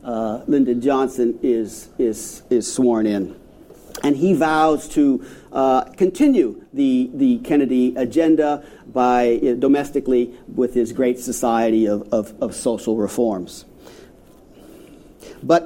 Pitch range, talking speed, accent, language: 120-155 Hz, 120 wpm, American, English